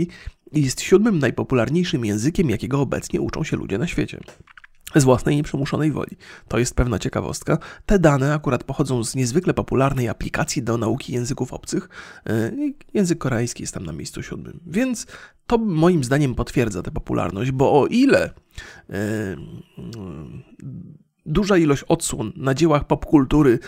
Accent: native